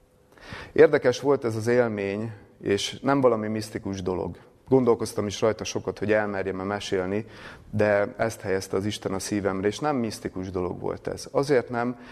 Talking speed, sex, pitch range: 160 wpm, male, 105-130 Hz